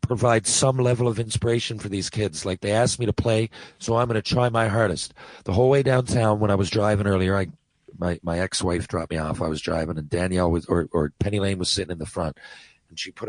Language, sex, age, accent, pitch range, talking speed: English, male, 40-59, American, 90-115 Hz, 250 wpm